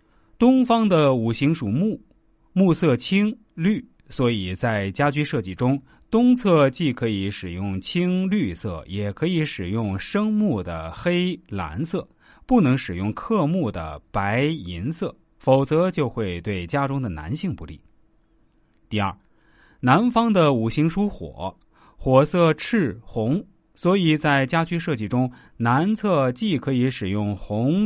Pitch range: 105-170 Hz